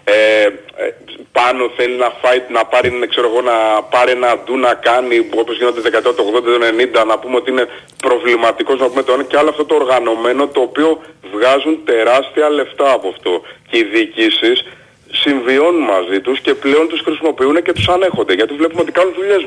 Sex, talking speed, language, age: male, 175 wpm, Greek, 30-49